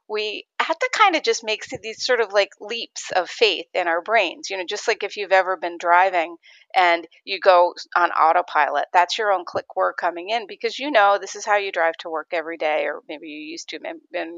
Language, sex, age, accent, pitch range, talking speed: English, female, 40-59, American, 175-225 Hz, 235 wpm